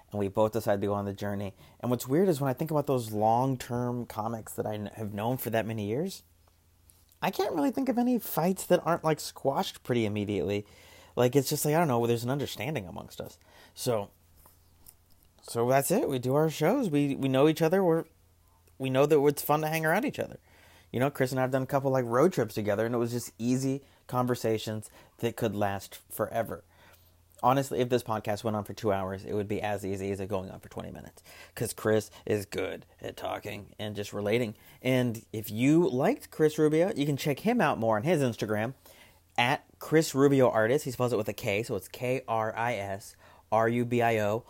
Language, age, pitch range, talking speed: English, 30-49, 100-135 Hz, 210 wpm